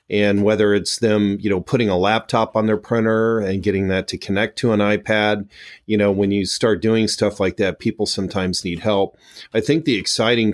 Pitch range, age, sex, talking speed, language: 95-105 Hz, 40-59, male, 210 wpm, English